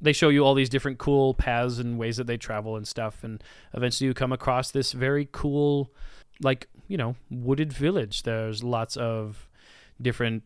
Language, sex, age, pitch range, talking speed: English, male, 20-39, 110-140 Hz, 185 wpm